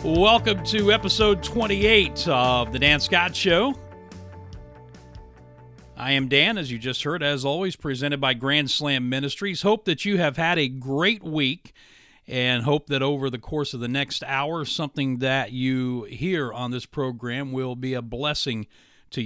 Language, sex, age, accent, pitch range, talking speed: English, male, 40-59, American, 120-145 Hz, 165 wpm